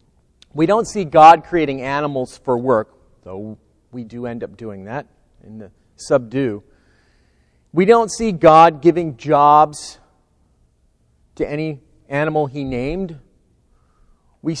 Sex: male